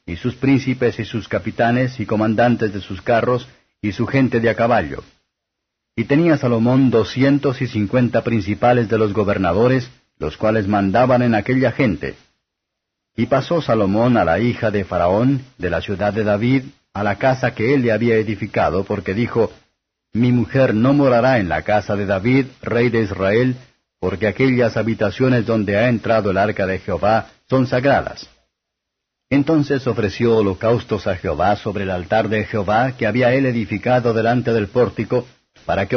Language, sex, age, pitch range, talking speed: Spanish, male, 50-69, 105-125 Hz, 165 wpm